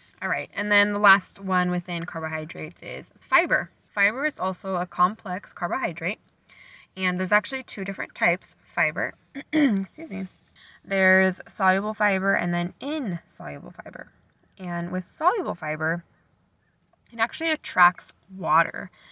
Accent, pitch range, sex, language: American, 165-200 Hz, female, English